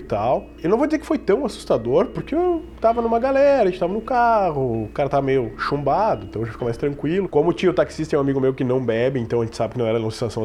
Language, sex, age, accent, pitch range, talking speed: Portuguese, male, 20-39, Brazilian, 120-175 Hz, 275 wpm